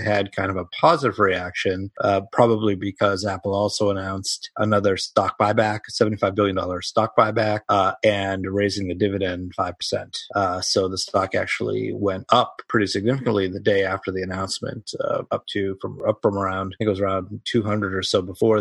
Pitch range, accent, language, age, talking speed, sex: 95-110 Hz, American, English, 30-49, 185 wpm, male